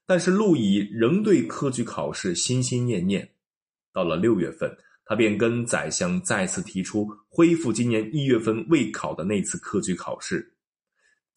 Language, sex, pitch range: Chinese, male, 110-180 Hz